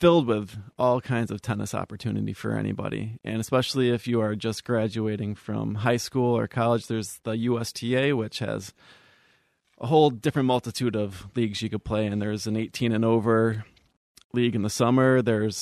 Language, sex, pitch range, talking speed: English, male, 105-120 Hz, 175 wpm